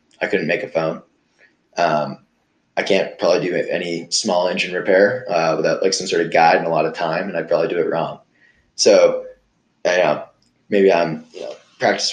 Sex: male